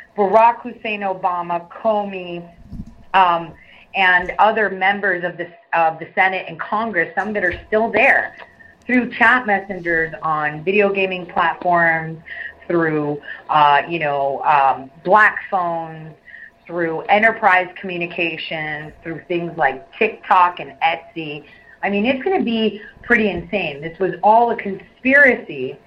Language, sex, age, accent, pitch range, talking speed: English, female, 30-49, American, 170-220 Hz, 130 wpm